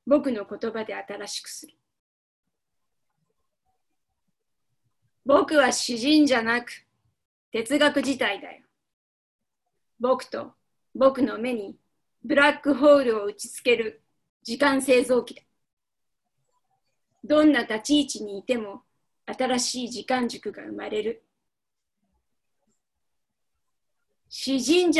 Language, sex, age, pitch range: Japanese, female, 30-49, 235-295 Hz